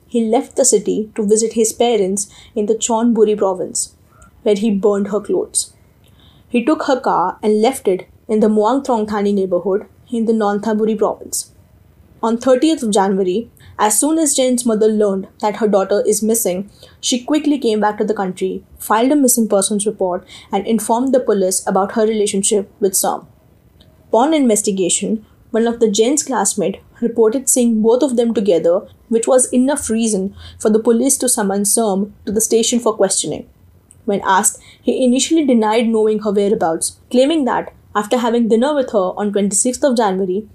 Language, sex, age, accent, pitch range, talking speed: English, female, 20-39, Indian, 205-240 Hz, 175 wpm